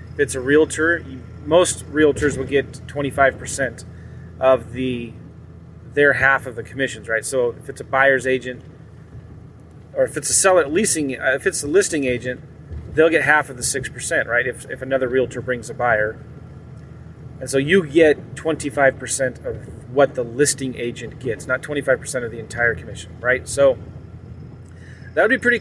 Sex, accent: male, American